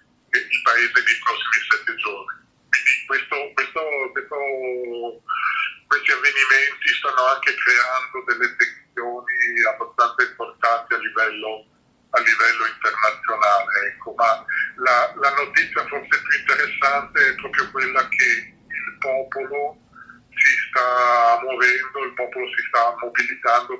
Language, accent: Italian, native